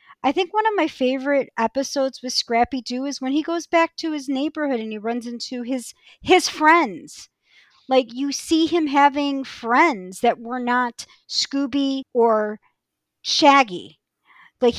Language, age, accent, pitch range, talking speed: English, 40-59, American, 230-305 Hz, 150 wpm